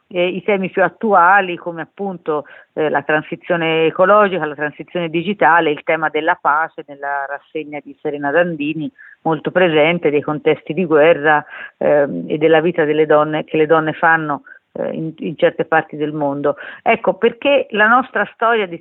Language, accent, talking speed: Italian, native, 165 wpm